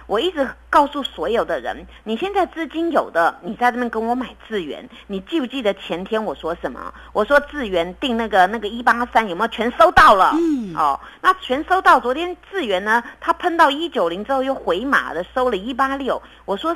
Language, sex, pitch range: Chinese, female, 195-285 Hz